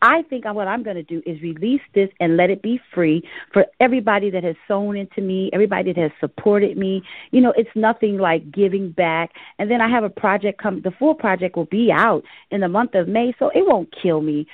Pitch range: 185-235 Hz